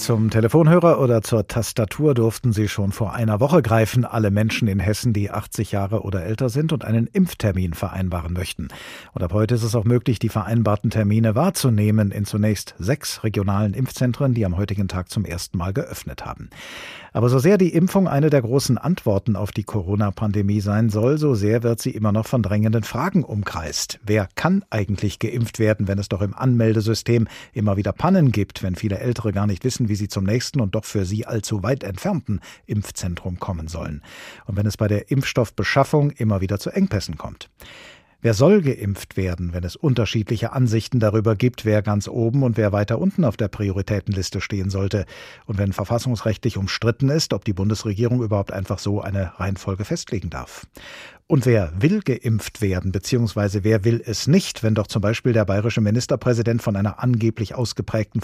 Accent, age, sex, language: German, 50-69, male, German